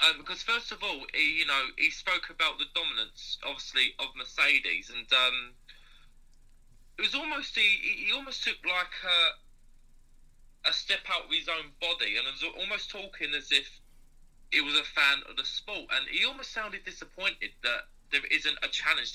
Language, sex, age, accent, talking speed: English, male, 20-39, British, 180 wpm